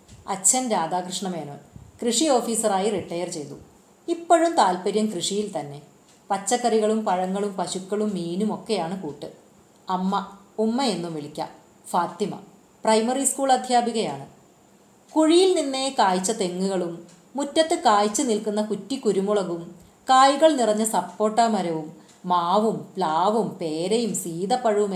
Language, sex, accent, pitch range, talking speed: Malayalam, female, native, 180-235 Hz, 95 wpm